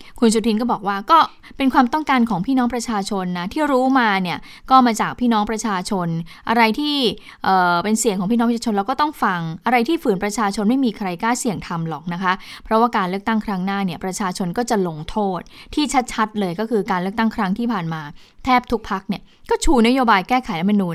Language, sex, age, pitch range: Thai, female, 20-39, 185-240 Hz